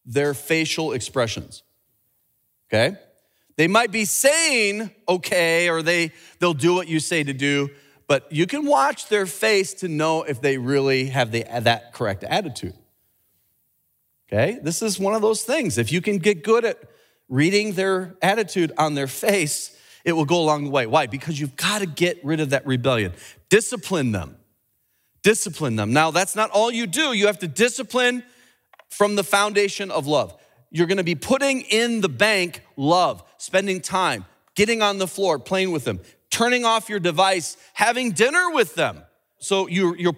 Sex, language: male, English